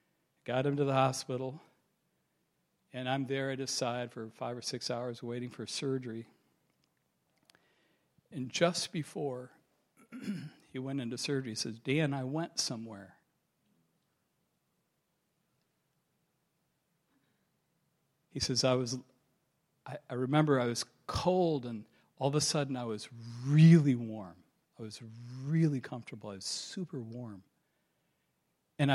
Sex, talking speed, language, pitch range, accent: male, 120 wpm, English, 115-150 Hz, American